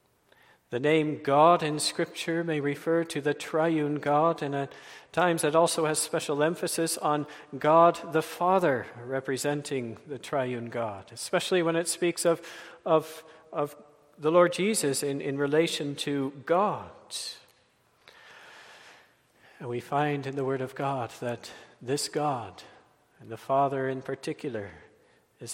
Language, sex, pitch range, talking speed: English, male, 140-170 Hz, 140 wpm